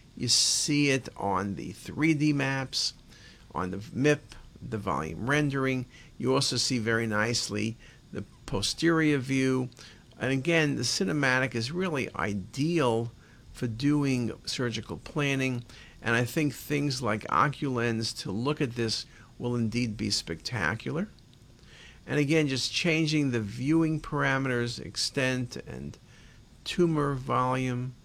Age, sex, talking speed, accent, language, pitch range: 50-69, male, 120 wpm, American, English, 115-145 Hz